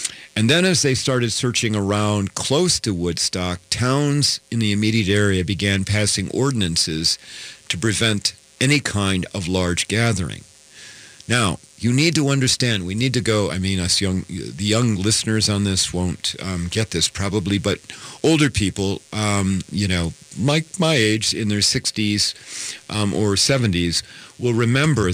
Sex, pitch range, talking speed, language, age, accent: male, 95-120 Hz, 155 wpm, English, 50-69, American